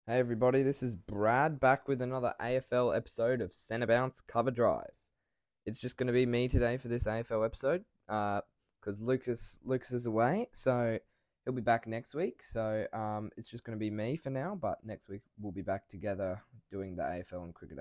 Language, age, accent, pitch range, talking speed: English, 10-29, Australian, 100-120 Hz, 200 wpm